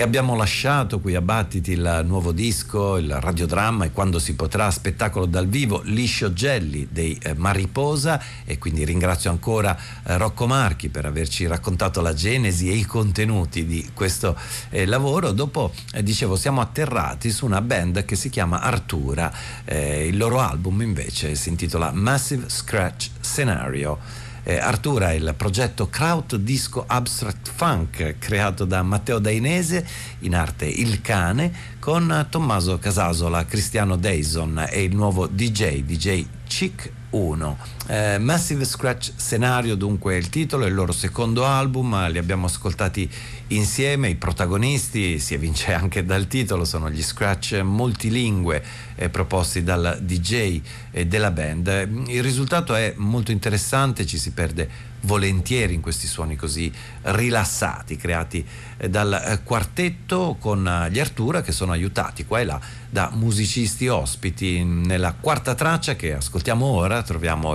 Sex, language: male, Italian